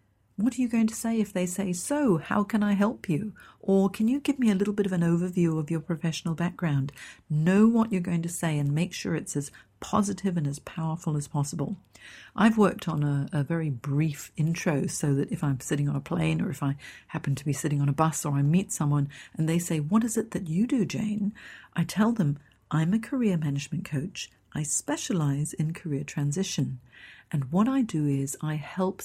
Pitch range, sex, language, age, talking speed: 145-195 Hz, female, English, 50-69, 220 wpm